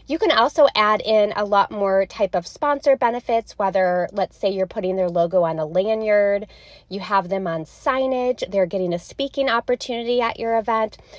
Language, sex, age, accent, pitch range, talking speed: English, female, 20-39, American, 200-270 Hz, 190 wpm